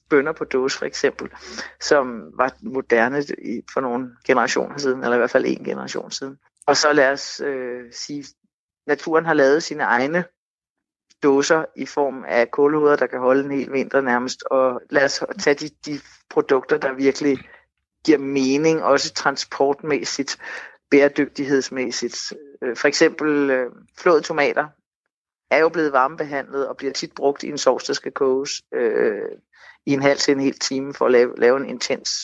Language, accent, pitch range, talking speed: Danish, native, 130-160 Hz, 165 wpm